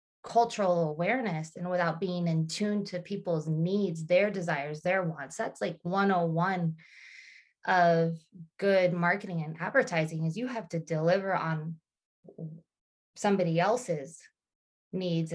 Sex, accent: female, American